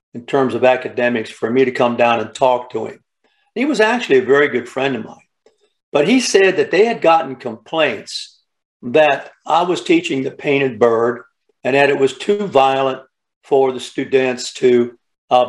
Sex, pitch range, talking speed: male, 120-150 Hz, 185 wpm